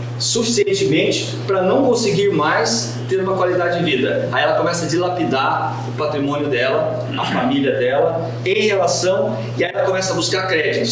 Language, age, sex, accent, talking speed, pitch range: Portuguese, 40-59, male, Brazilian, 165 wpm, 130-205 Hz